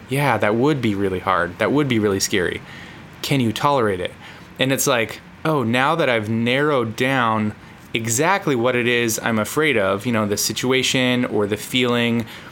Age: 20-39